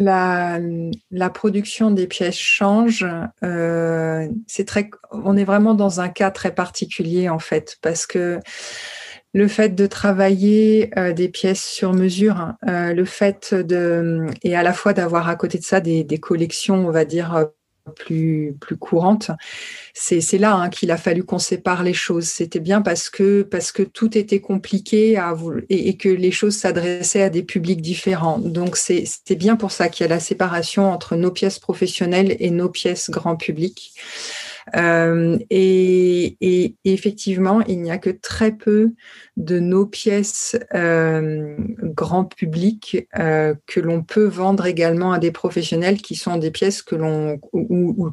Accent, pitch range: French, 170-200 Hz